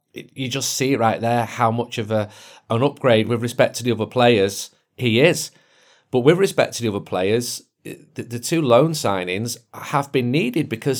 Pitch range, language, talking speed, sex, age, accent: 110-135 Hz, English, 190 wpm, male, 40-59, British